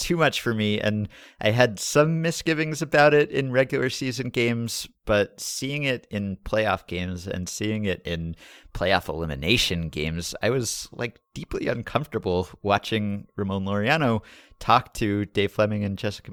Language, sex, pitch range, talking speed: English, male, 95-120 Hz, 155 wpm